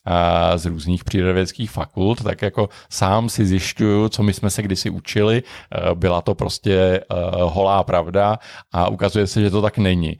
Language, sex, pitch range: Czech, male, 95-110 Hz